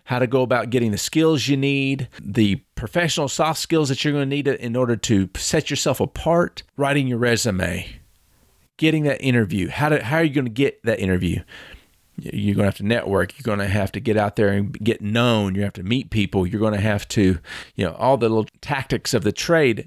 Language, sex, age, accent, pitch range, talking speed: English, male, 40-59, American, 100-140 Hz, 235 wpm